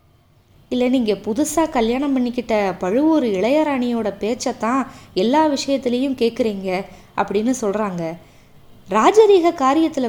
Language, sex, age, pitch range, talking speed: Tamil, female, 20-39, 200-280 Hz, 95 wpm